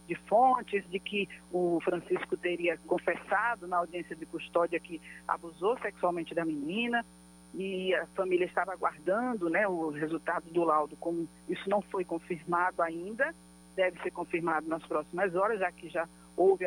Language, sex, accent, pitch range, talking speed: Portuguese, female, Brazilian, 165-205 Hz, 155 wpm